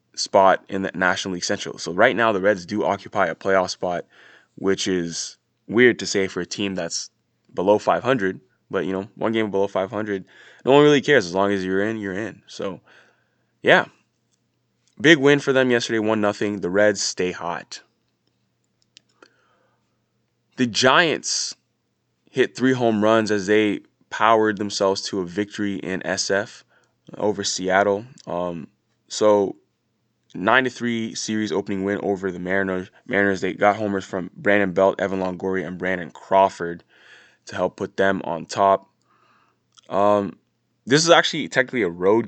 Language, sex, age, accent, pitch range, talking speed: English, male, 20-39, American, 95-110 Hz, 155 wpm